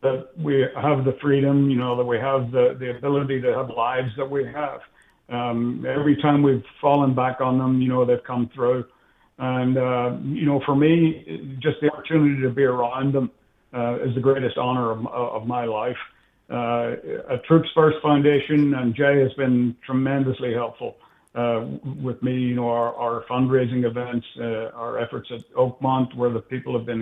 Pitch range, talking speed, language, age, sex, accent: 120-135 Hz, 185 wpm, English, 60-79, male, American